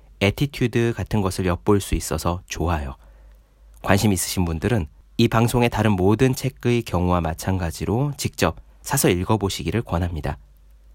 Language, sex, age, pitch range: Korean, male, 40-59, 80-125 Hz